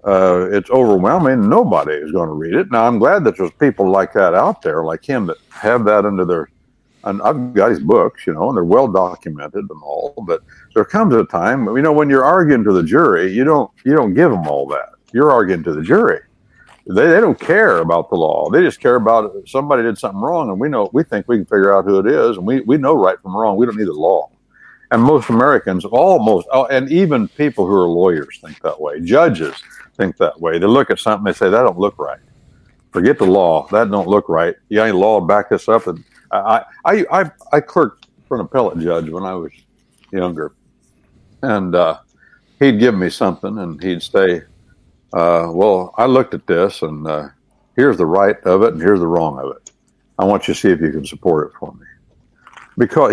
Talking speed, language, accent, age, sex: 225 wpm, English, American, 60-79, male